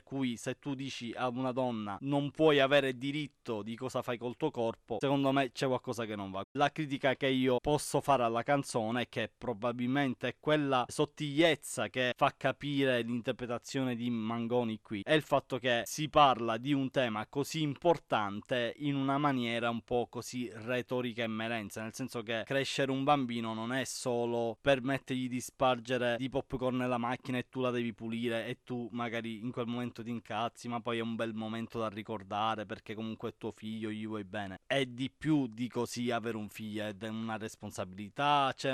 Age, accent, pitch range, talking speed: 20-39, native, 115-140 Hz, 185 wpm